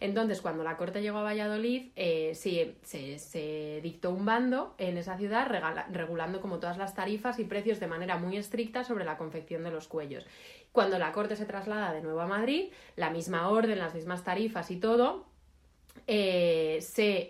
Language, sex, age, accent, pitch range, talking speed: Spanish, female, 30-49, Spanish, 175-230 Hz, 185 wpm